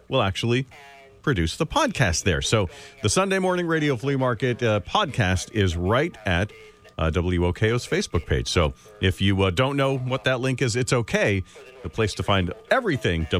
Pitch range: 90-130 Hz